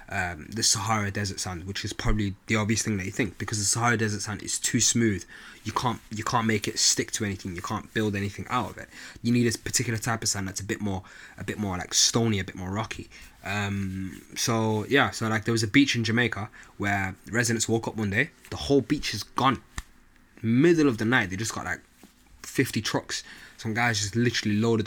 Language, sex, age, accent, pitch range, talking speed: English, male, 20-39, British, 100-115 Hz, 230 wpm